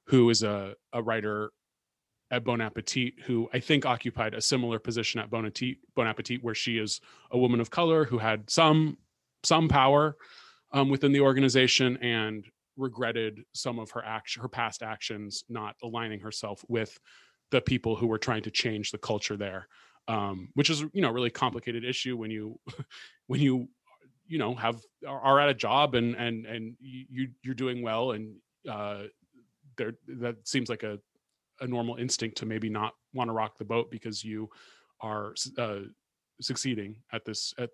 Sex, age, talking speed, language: male, 30-49, 175 wpm, English